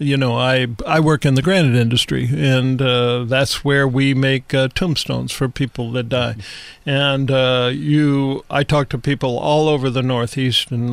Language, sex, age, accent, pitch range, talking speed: English, male, 50-69, American, 130-155 Hz, 180 wpm